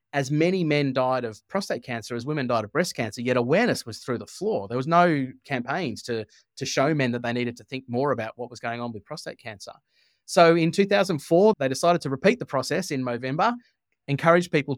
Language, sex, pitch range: English, male, 125-160 Hz